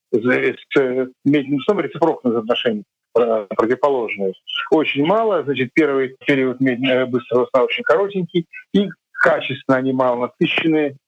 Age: 50-69